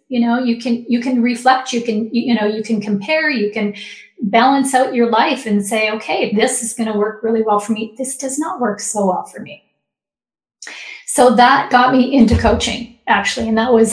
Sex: female